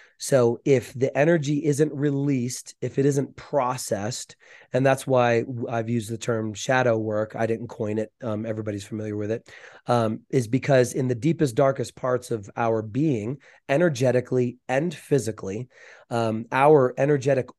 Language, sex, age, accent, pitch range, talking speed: English, male, 30-49, American, 115-135 Hz, 155 wpm